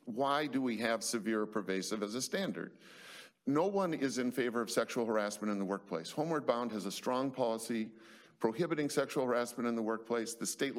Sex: male